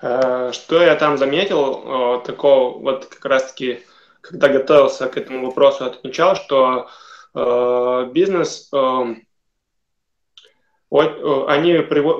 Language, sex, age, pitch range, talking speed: Russian, male, 20-39, 130-160 Hz, 85 wpm